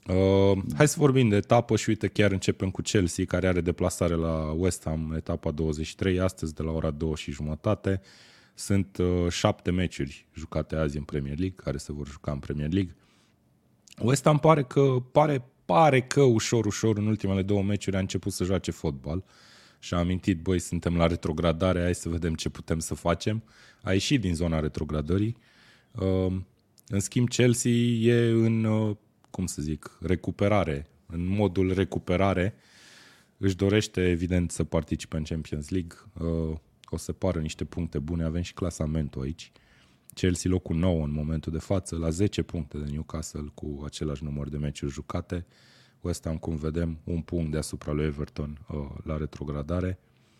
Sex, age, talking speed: male, 20-39, 160 wpm